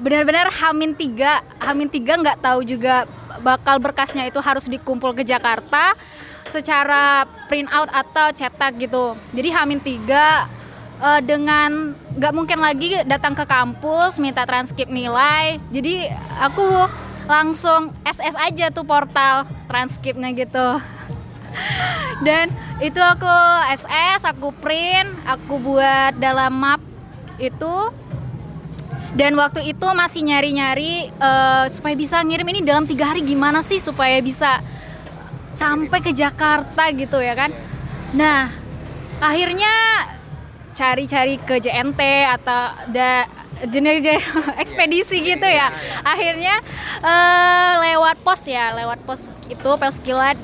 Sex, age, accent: female, 20-39, native